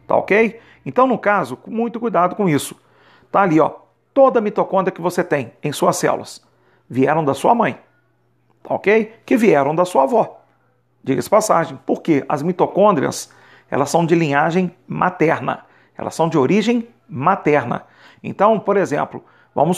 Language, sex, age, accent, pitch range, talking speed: Portuguese, male, 40-59, Brazilian, 150-195 Hz, 160 wpm